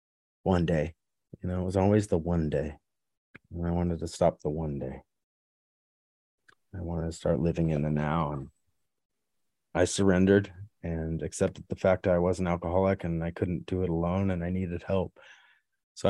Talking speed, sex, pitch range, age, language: 185 wpm, male, 85-100 Hz, 30-49, English